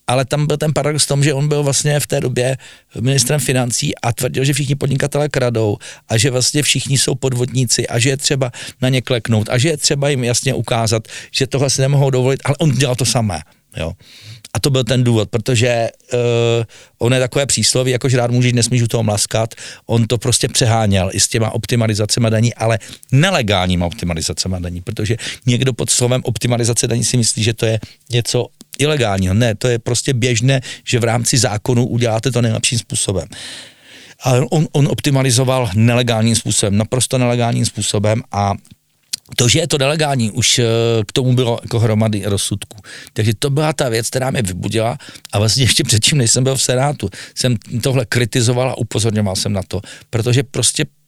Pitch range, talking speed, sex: 110-135 Hz, 185 wpm, male